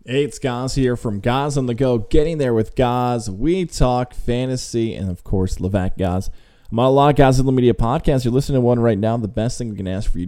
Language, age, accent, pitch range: English, 20-39, American, 95-130 Hz